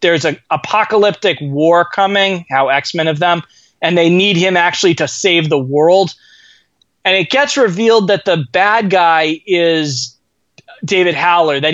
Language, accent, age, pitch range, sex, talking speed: English, American, 20-39, 155-200 Hz, male, 155 wpm